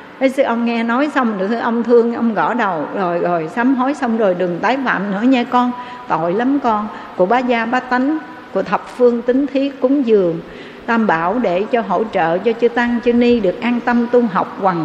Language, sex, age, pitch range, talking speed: Vietnamese, female, 60-79, 205-255 Hz, 230 wpm